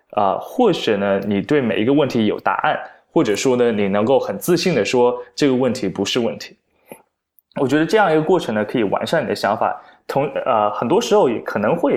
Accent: native